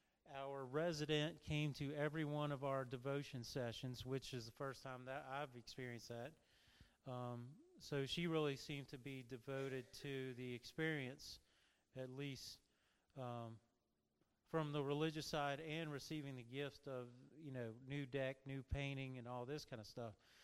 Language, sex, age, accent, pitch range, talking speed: English, male, 40-59, American, 125-150 Hz, 160 wpm